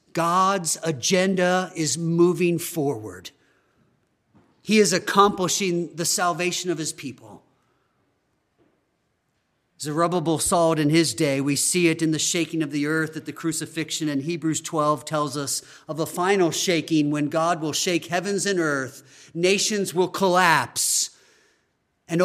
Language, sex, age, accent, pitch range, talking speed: English, male, 40-59, American, 165-235 Hz, 140 wpm